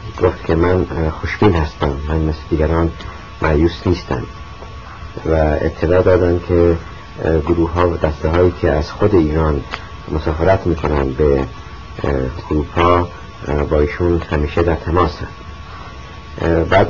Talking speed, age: 120 wpm, 50-69